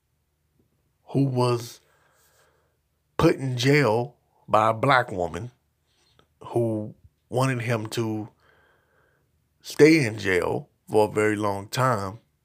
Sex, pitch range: male, 90-125 Hz